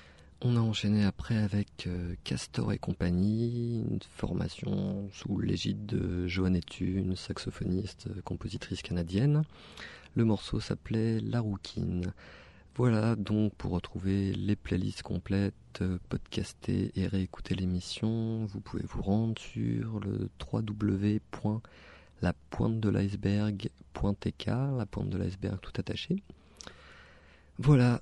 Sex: male